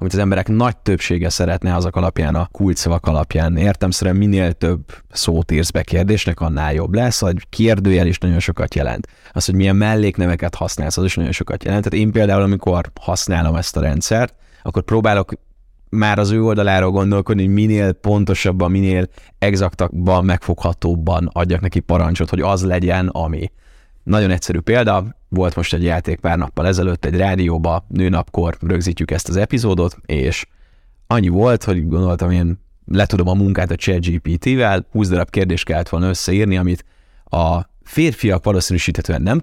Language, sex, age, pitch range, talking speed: Hungarian, male, 20-39, 85-100 Hz, 160 wpm